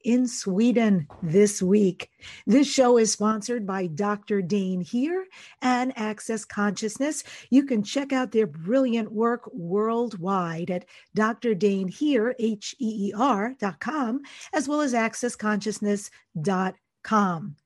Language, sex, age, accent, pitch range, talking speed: English, female, 50-69, American, 195-255 Hz, 100 wpm